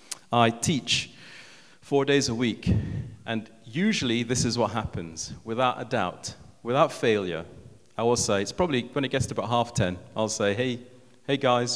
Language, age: English, 40-59